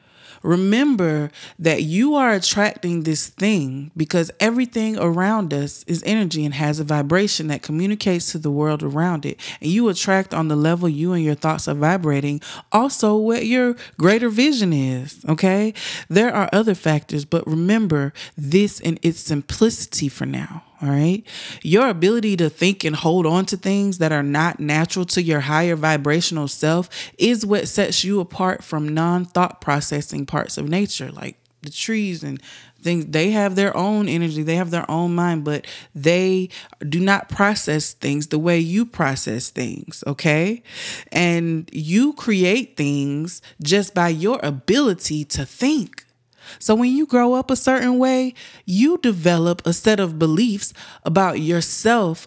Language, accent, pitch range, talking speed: English, American, 155-205 Hz, 160 wpm